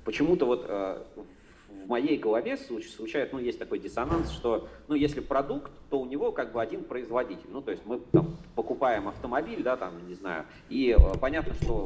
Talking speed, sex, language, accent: 175 wpm, male, Russian, native